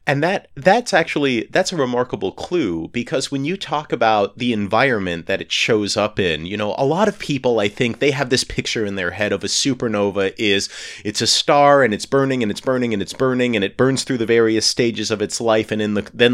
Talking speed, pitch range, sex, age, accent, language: 240 wpm, 105-130 Hz, male, 30-49, American, English